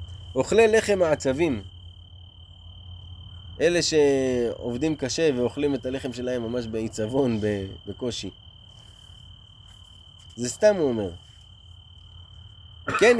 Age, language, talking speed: 20-39, Hebrew, 80 wpm